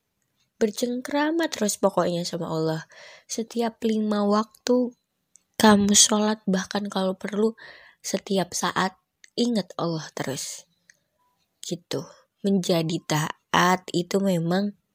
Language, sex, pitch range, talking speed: Indonesian, female, 170-225 Hz, 90 wpm